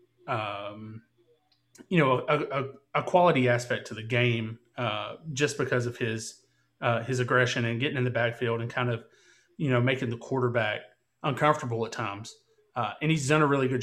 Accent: American